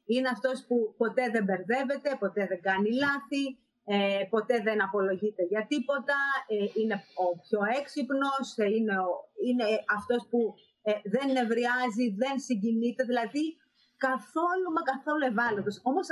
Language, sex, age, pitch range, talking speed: Greek, female, 30-49, 210-265 Hz, 140 wpm